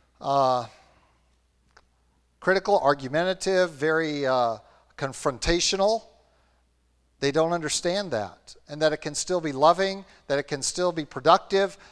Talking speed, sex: 115 wpm, male